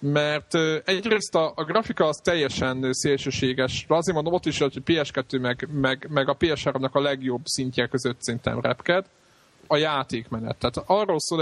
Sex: male